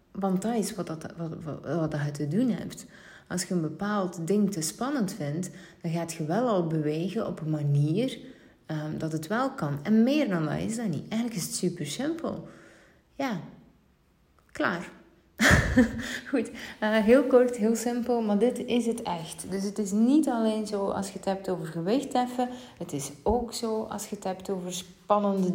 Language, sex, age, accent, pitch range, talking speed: Dutch, female, 30-49, Dutch, 175-220 Hz, 195 wpm